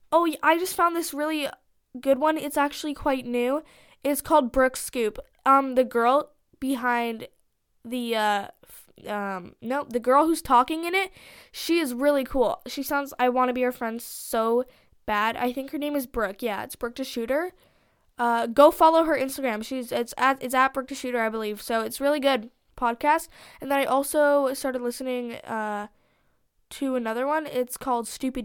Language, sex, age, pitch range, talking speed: English, female, 10-29, 235-285 Hz, 185 wpm